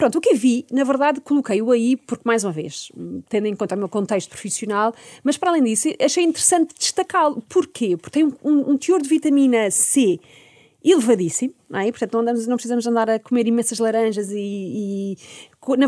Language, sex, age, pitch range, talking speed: Portuguese, female, 30-49, 210-285 Hz, 200 wpm